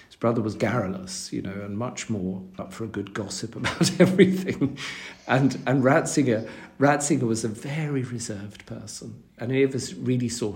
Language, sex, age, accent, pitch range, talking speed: English, male, 50-69, British, 115-140 Hz, 165 wpm